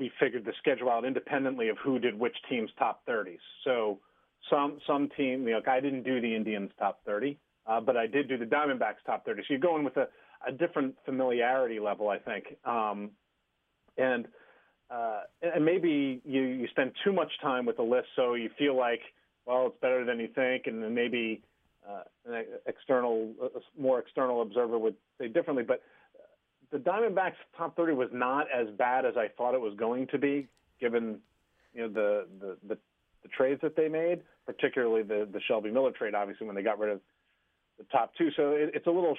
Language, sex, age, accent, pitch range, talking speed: English, male, 40-59, American, 115-145 Hz, 200 wpm